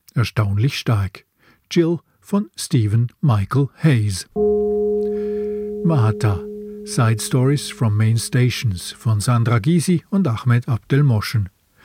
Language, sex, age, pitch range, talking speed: German, male, 50-69, 115-160 Hz, 95 wpm